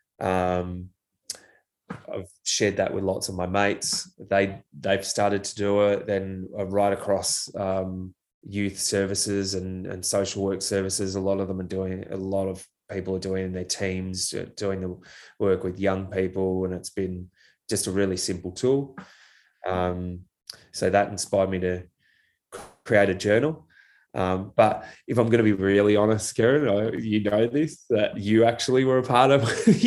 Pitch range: 95-115 Hz